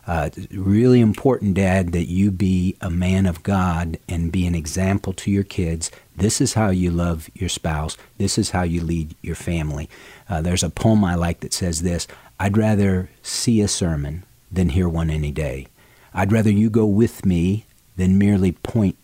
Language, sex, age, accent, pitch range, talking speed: English, male, 50-69, American, 85-105 Hz, 190 wpm